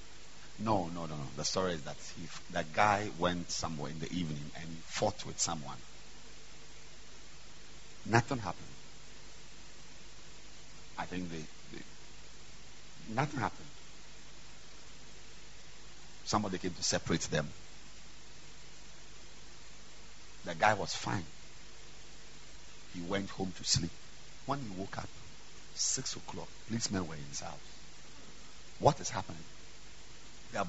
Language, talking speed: English, 110 wpm